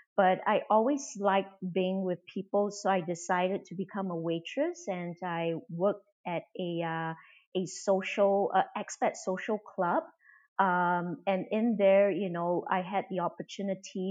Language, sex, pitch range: English, female, 175-200 Hz